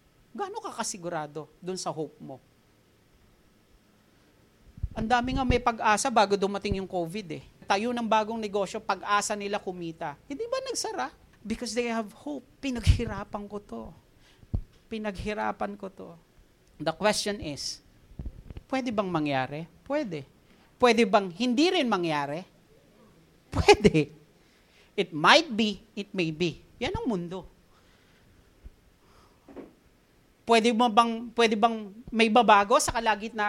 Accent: native